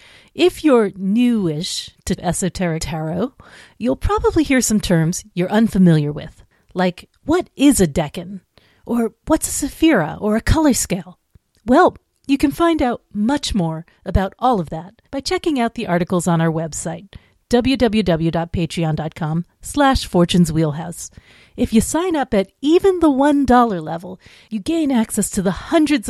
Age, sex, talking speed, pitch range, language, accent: 40-59, female, 145 wpm, 165-255 Hz, English, American